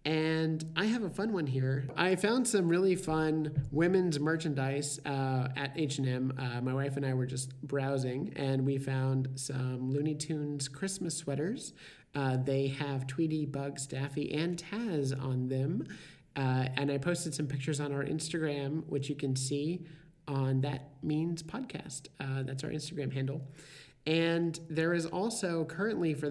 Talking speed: 160 wpm